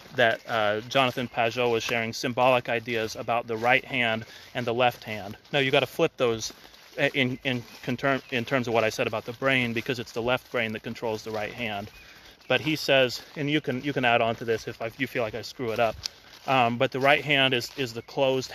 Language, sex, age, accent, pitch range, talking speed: English, male, 30-49, American, 115-135 Hz, 235 wpm